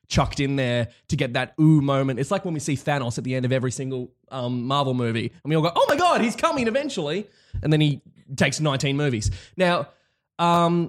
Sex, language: male, English